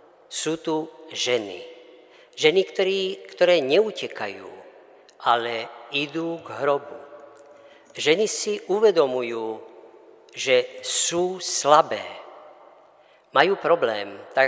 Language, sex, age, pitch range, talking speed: Slovak, female, 50-69, 140-220 Hz, 85 wpm